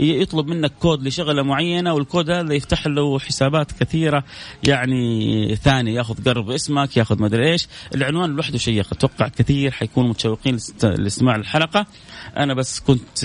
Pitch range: 110-140 Hz